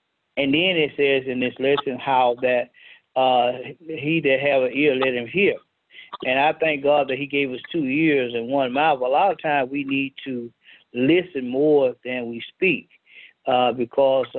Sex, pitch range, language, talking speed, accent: male, 130-150 Hz, English, 190 wpm, American